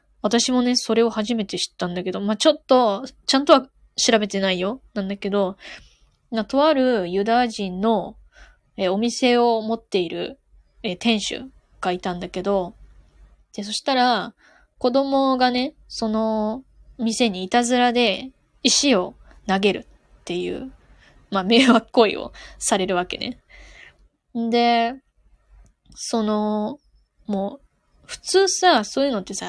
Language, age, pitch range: Japanese, 10-29, 205-265 Hz